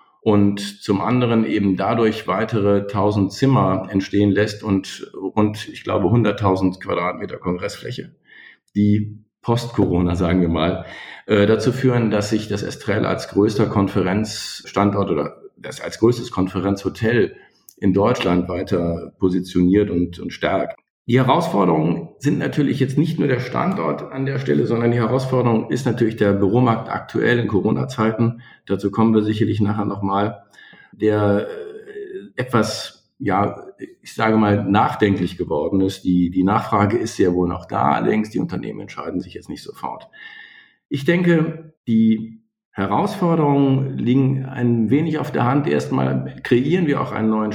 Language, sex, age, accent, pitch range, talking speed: German, male, 50-69, German, 100-130 Hz, 140 wpm